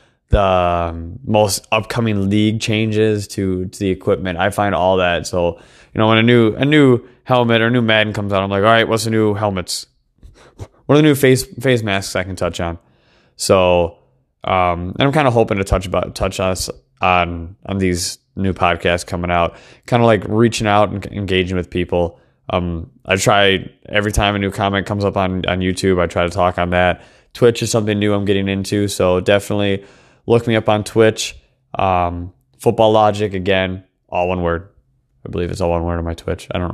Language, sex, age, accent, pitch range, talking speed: English, male, 20-39, American, 90-115 Hz, 205 wpm